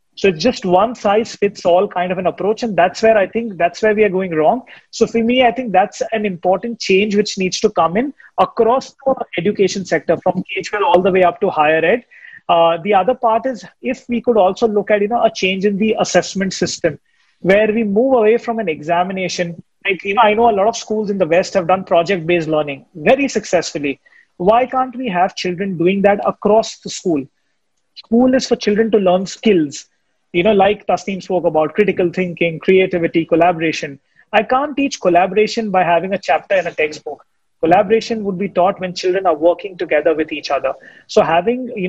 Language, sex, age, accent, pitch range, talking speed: English, male, 30-49, Indian, 175-225 Hz, 210 wpm